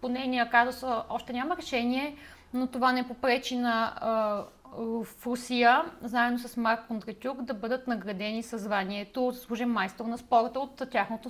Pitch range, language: 225-275 Hz, Bulgarian